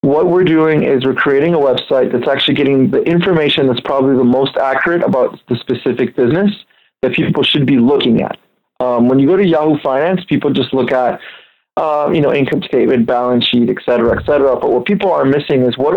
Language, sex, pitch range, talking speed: English, male, 125-145 Hz, 215 wpm